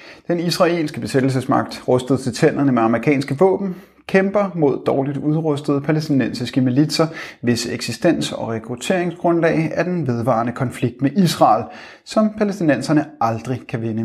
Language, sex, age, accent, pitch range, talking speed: Danish, male, 30-49, native, 125-160 Hz, 130 wpm